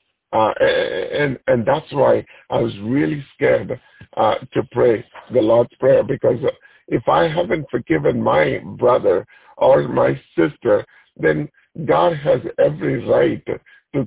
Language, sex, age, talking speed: English, male, 50-69, 130 wpm